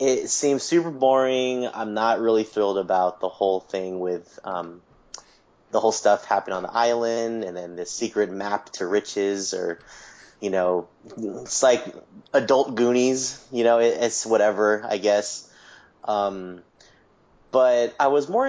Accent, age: American, 30-49